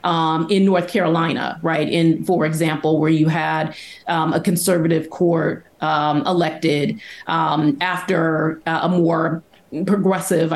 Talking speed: 130 wpm